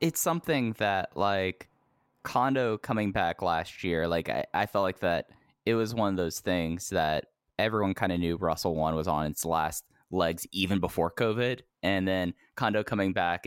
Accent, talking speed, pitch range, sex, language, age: American, 185 wpm, 85-100 Hz, male, English, 10-29